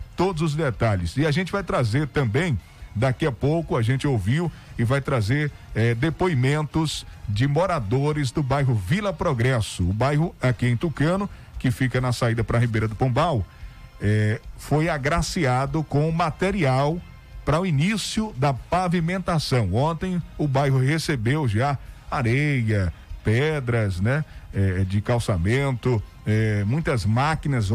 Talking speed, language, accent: 135 wpm, Portuguese, Brazilian